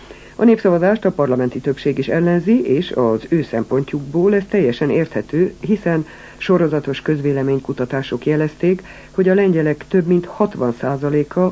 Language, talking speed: Hungarian, 130 wpm